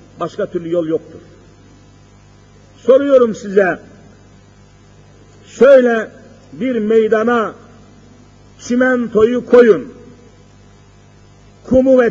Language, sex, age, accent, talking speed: Turkish, male, 50-69, native, 65 wpm